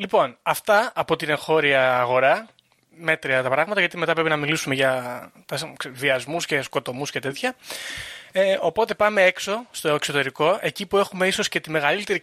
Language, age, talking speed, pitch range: Greek, 20-39, 155 wpm, 145-200 Hz